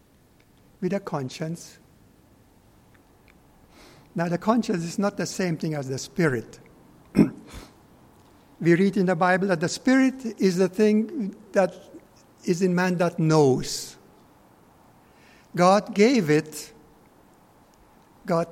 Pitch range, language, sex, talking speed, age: 155-195 Hz, English, male, 115 wpm, 60-79